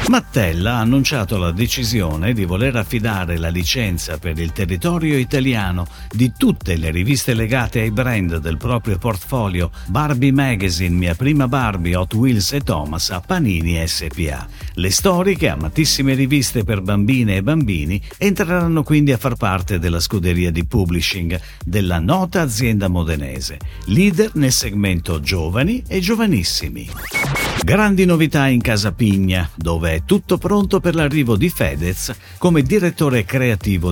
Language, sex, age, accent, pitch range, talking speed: Italian, male, 50-69, native, 85-135 Hz, 140 wpm